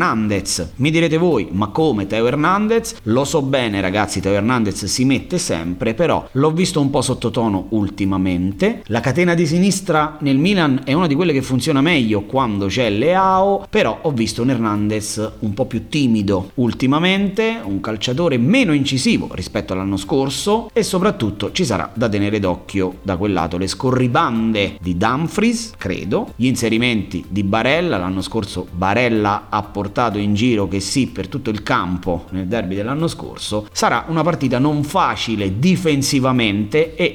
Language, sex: Italian, male